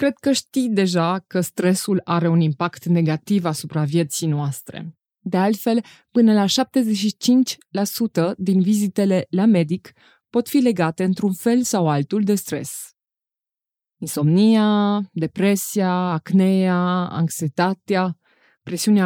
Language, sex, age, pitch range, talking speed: Romanian, female, 20-39, 175-230 Hz, 115 wpm